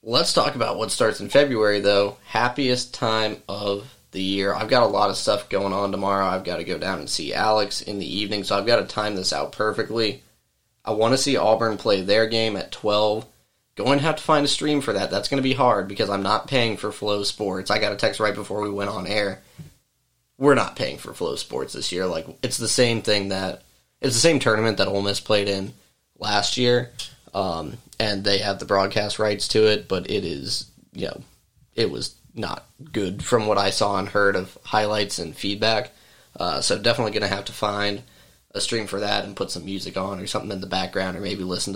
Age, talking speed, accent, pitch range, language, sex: 20-39, 230 wpm, American, 100-115 Hz, English, male